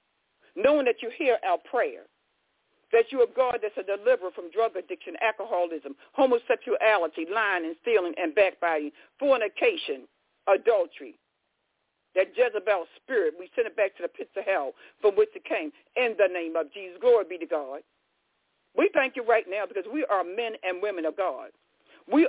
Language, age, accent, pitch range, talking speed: English, 60-79, American, 195-295 Hz, 170 wpm